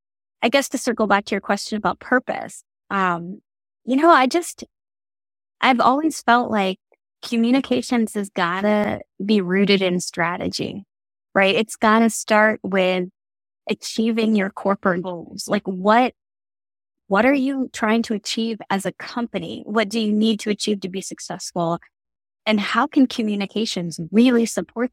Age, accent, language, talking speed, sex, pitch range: 20-39, American, English, 145 wpm, female, 185-240 Hz